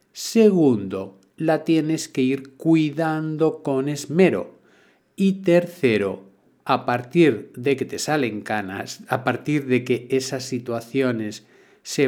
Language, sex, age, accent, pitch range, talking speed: Spanish, male, 50-69, Spanish, 125-165 Hz, 120 wpm